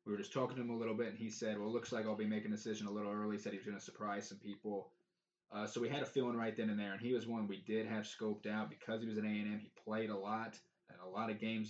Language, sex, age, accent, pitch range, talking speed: English, male, 20-39, American, 100-115 Hz, 340 wpm